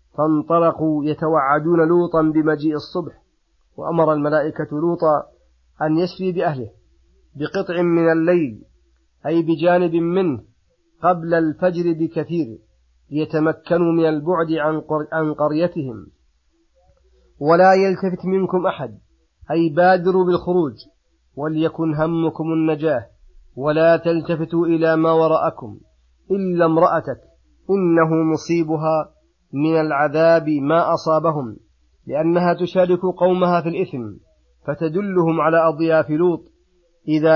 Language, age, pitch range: Arabic, 40-59, 150-165 Hz